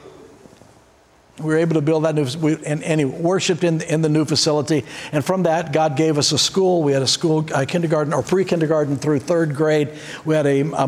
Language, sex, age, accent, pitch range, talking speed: English, male, 60-79, American, 145-190 Hz, 220 wpm